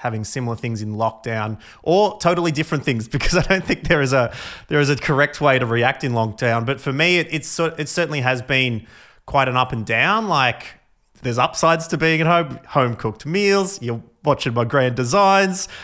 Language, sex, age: English, male, 30-49